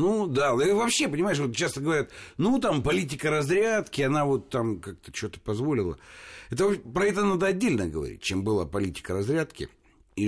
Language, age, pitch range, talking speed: Russian, 60-79, 105-160 Hz, 160 wpm